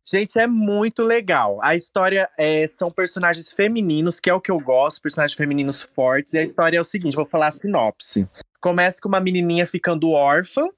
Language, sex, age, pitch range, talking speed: Portuguese, male, 20-39, 145-190 Hz, 190 wpm